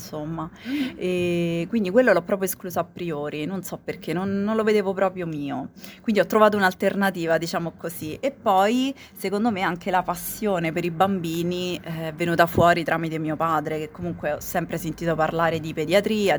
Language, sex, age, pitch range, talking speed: Italian, female, 30-49, 160-195 Hz, 170 wpm